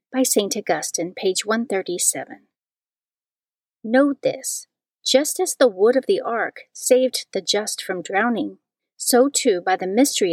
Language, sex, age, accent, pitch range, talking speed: English, female, 40-59, American, 195-260 Hz, 140 wpm